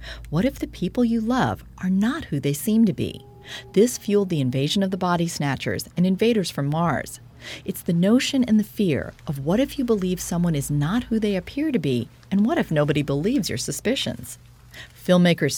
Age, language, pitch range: 40-59, English, 145-210 Hz